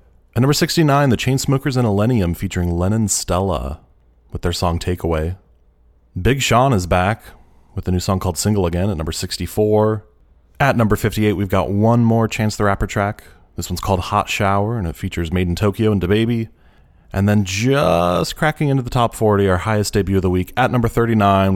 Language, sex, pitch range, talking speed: English, male, 85-110 Hz, 190 wpm